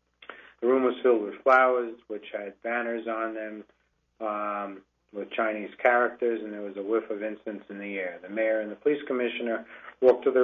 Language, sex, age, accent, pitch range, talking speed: English, male, 40-59, American, 105-120 Hz, 195 wpm